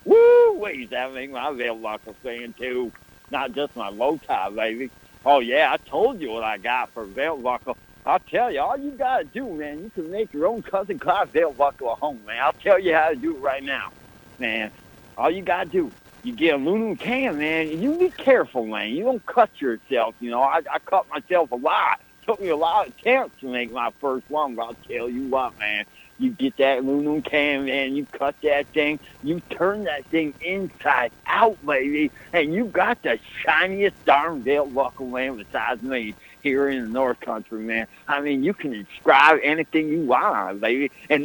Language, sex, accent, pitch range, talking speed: English, male, American, 130-195 Hz, 220 wpm